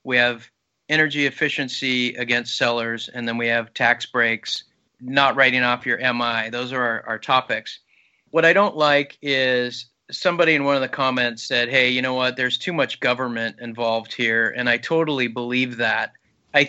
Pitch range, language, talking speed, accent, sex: 125-150 Hz, English, 180 wpm, American, male